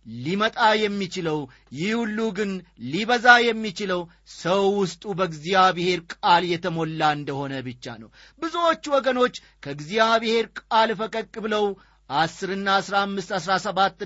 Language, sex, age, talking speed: Amharic, male, 40-59, 100 wpm